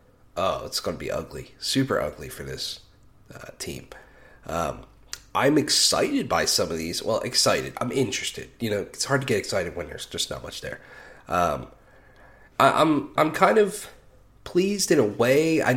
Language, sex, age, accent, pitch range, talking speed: English, male, 30-49, American, 100-135 Hz, 180 wpm